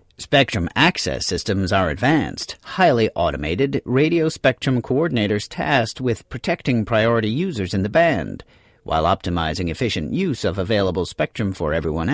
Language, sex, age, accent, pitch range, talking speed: English, male, 40-59, American, 100-140 Hz, 135 wpm